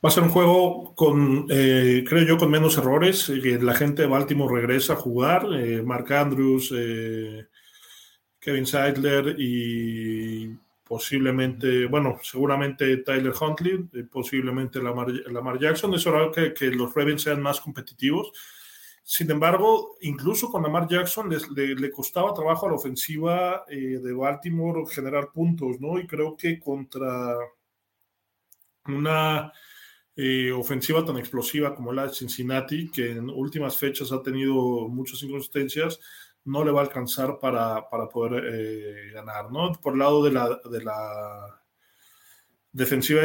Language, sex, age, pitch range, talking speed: English, male, 20-39, 125-155 Hz, 145 wpm